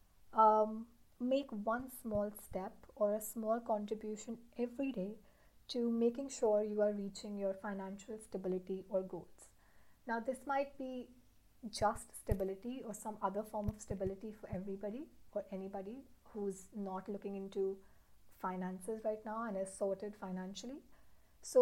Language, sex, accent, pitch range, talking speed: English, female, Indian, 195-230 Hz, 140 wpm